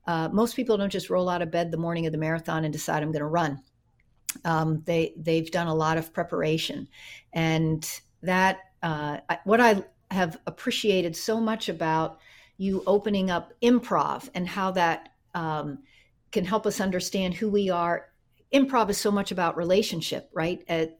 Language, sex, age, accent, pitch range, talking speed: English, female, 50-69, American, 170-205 Hz, 175 wpm